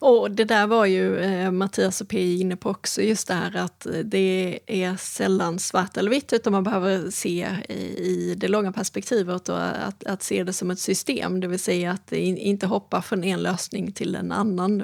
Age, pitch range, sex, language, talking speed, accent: 30-49, 185-220 Hz, female, Swedish, 215 wpm, native